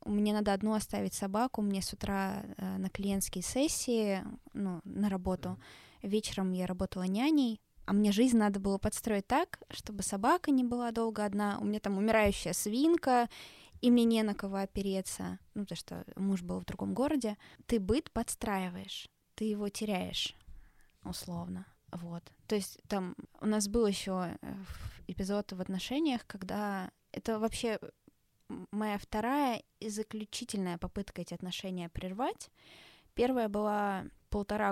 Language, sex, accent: Russian, female, native